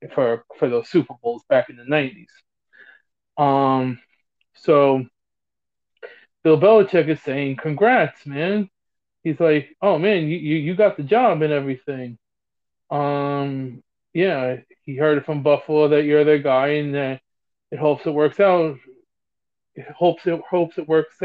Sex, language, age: male, English, 20-39